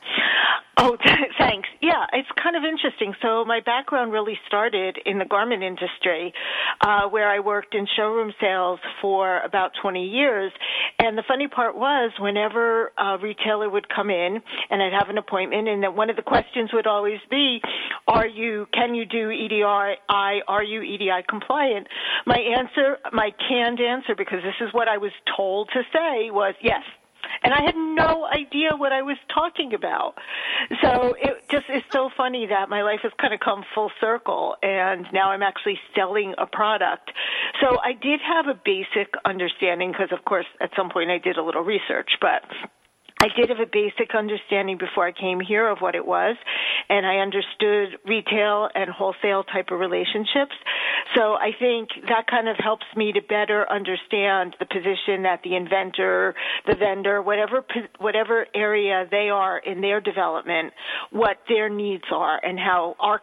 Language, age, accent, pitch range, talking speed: English, 50-69, American, 195-240 Hz, 175 wpm